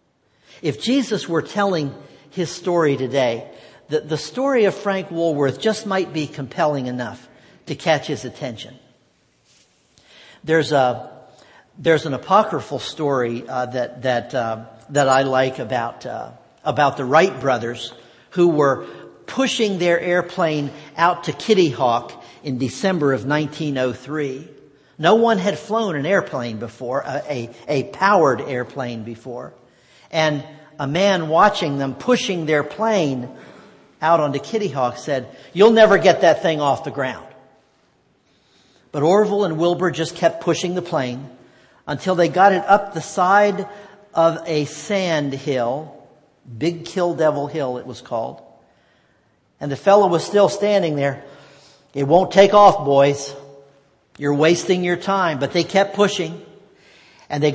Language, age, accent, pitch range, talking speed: English, 50-69, American, 135-185 Hz, 145 wpm